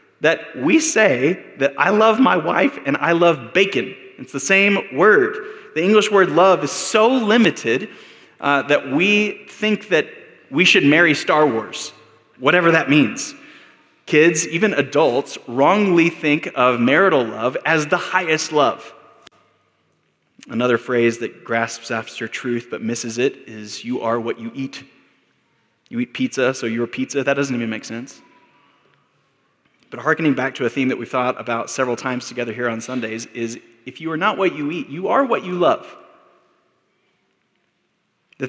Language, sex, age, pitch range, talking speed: English, male, 20-39, 125-175 Hz, 160 wpm